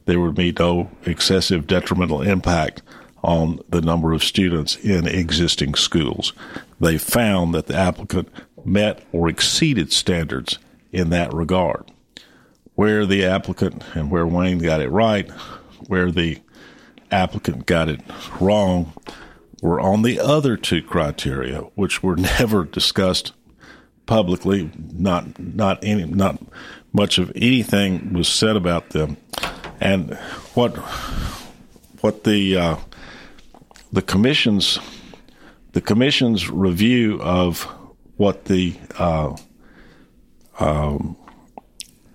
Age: 50-69